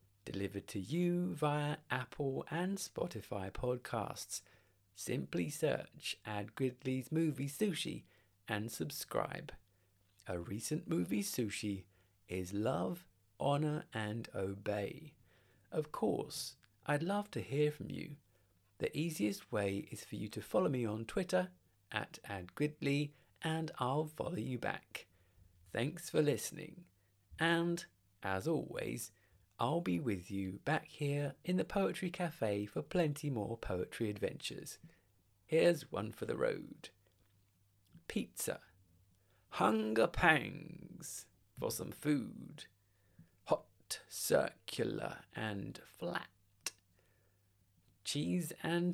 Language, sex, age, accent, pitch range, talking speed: English, male, 40-59, British, 100-150 Hz, 110 wpm